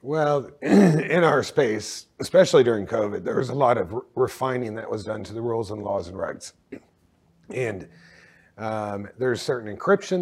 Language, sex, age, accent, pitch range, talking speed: English, male, 40-59, American, 115-135 Hz, 165 wpm